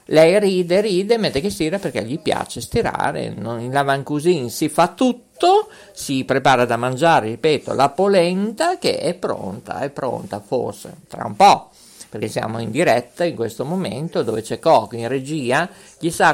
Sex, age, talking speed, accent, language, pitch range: male, 50-69, 160 wpm, native, Italian, 130-195 Hz